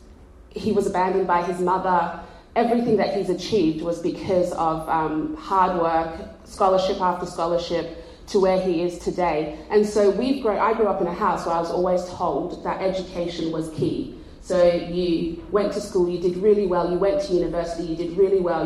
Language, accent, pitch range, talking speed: English, British, 170-200 Hz, 195 wpm